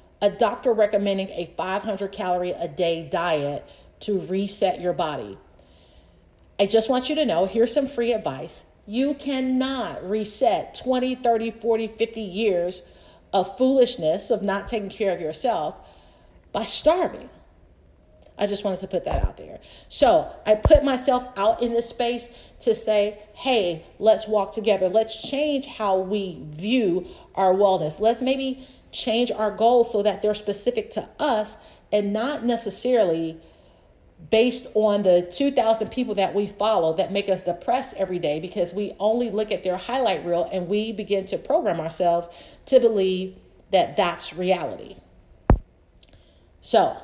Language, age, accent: English, 40-59, American